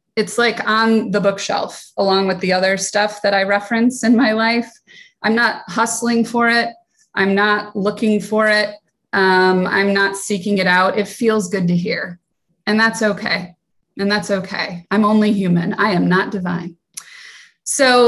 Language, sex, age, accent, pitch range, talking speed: English, female, 20-39, American, 180-225 Hz, 170 wpm